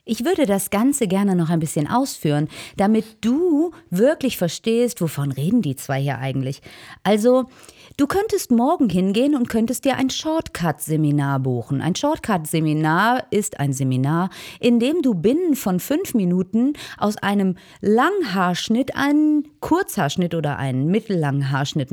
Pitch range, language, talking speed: 155-240 Hz, German, 140 wpm